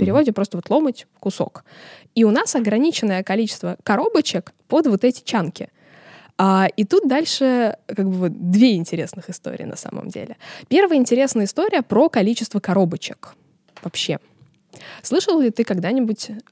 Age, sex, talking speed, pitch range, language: 20-39, female, 145 wpm, 180-245 Hz, Russian